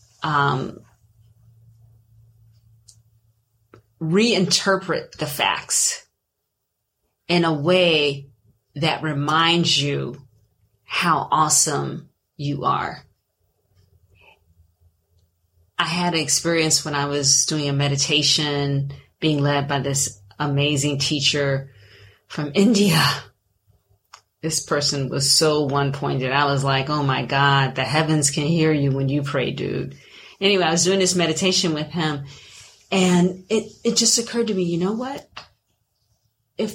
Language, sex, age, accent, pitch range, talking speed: English, female, 30-49, American, 125-175 Hz, 120 wpm